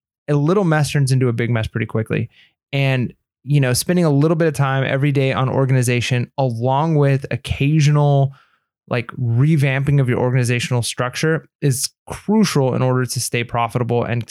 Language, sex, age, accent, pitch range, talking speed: English, male, 20-39, American, 125-145 Hz, 170 wpm